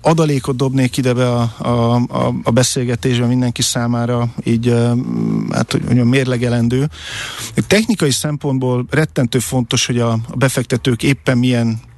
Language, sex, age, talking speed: Hungarian, male, 50-69, 140 wpm